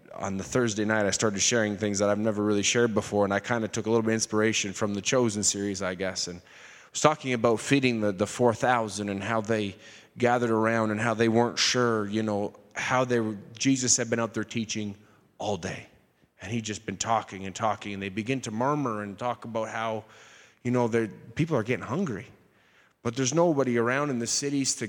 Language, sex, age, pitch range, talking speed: English, male, 20-39, 105-130 Hz, 220 wpm